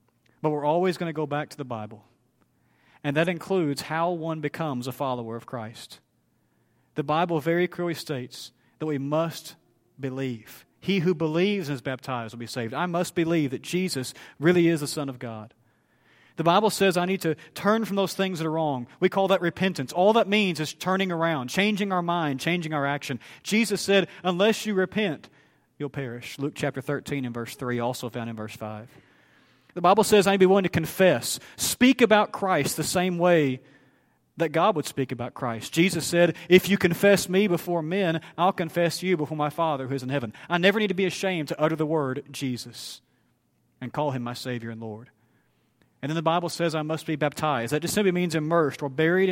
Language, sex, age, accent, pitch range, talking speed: English, male, 40-59, American, 130-175 Hz, 205 wpm